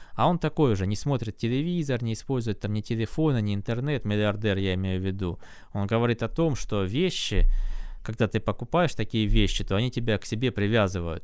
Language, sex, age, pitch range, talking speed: Russian, male, 20-39, 95-120 Hz, 190 wpm